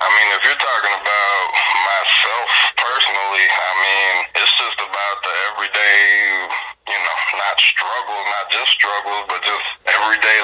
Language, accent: English, American